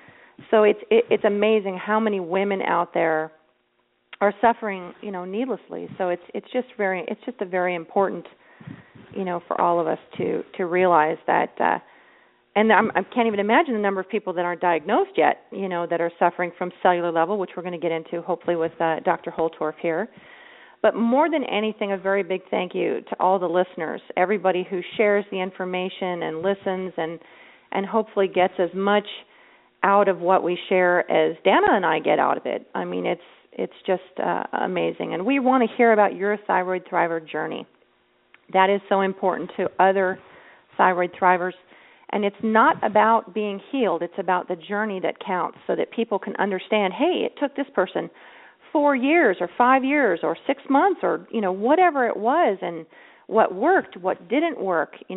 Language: English